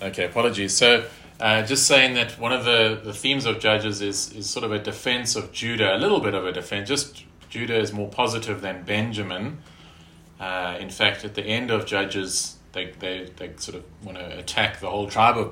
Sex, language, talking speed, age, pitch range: male, English, 215 wpm, 30-49, 90-110 Hz